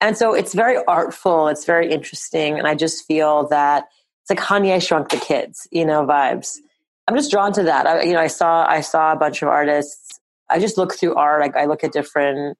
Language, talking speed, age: English, 230 wpm, 30-49